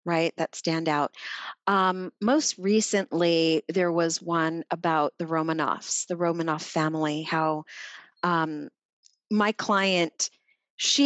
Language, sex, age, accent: English, female, 40-59, American